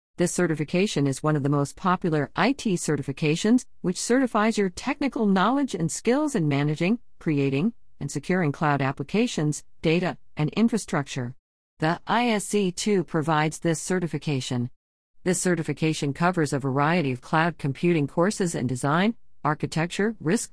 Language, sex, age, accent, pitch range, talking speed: English, female, 50-69, American, 145-190 Hz, 130 wpm